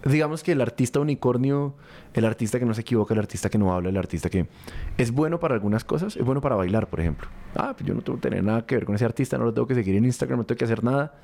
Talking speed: 295 wpm